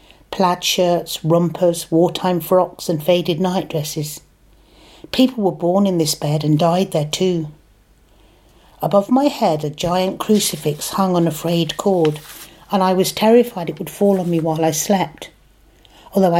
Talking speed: 155 wpm